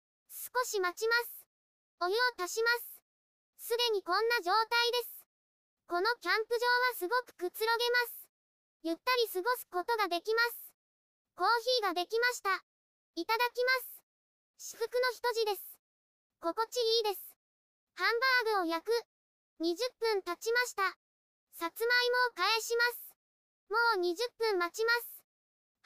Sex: male